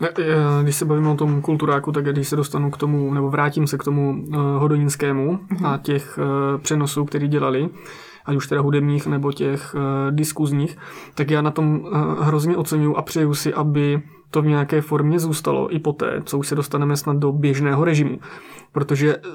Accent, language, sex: native, Czech, male